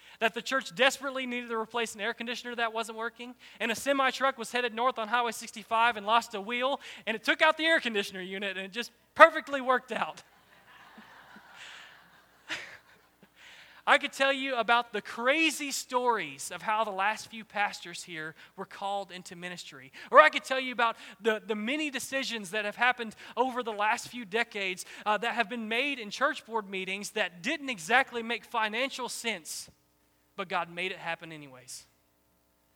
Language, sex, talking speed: English, male, 180 wpm